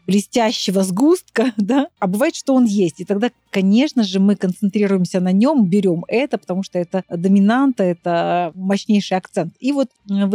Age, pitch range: 30-49, 190-230 Hz